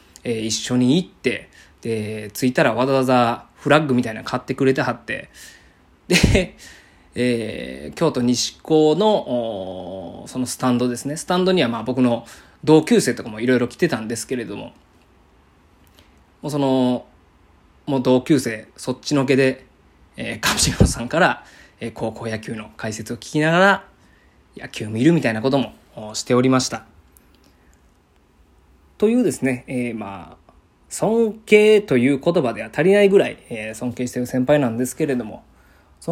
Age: 20-39